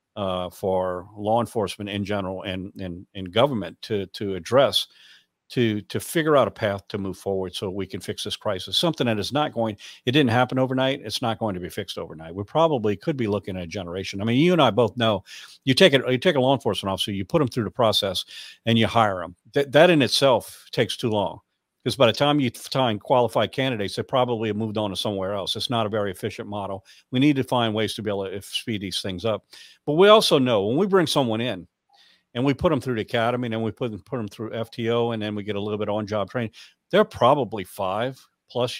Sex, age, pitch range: male, 50-69, 105-130 Hz